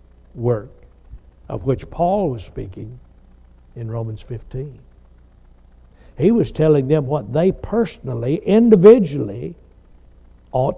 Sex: male